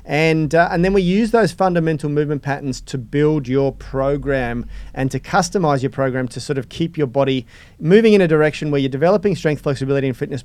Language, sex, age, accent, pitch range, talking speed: English, male, 30-49, Australian, 130-155 Hz, 205 wpm